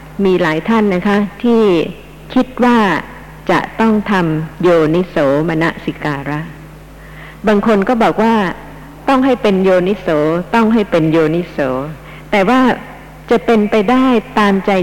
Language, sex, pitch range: Thai, female, 155-215 Hz